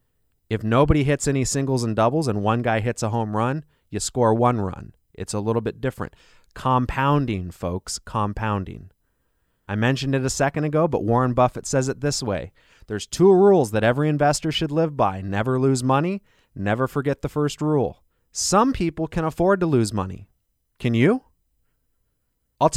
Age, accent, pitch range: 30-49, American, 110-155 Hz